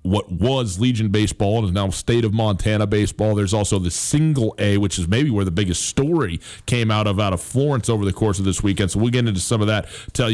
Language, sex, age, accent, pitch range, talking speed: English, male, 40-59, American, 100-135 Hz, 250 wpm